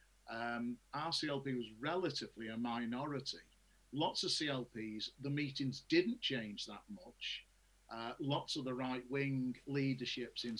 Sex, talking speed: male, 135 wpm